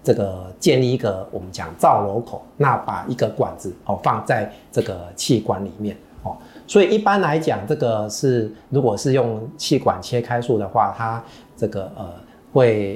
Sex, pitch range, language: male, 95-120 Hz, Chinese